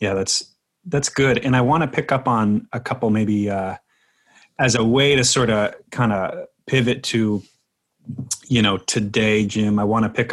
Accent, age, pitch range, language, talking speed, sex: American, 30-49, 105-120 Hz, English, 190 wpm, male